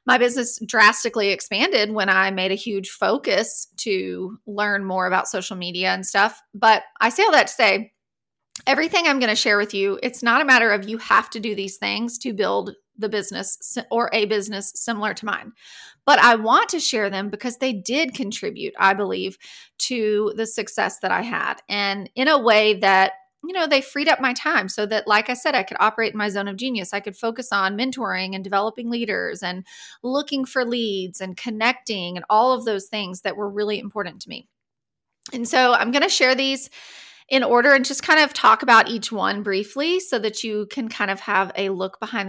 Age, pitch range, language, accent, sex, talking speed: 30-49, 200-255 Hz, English, American, female, 210 wpm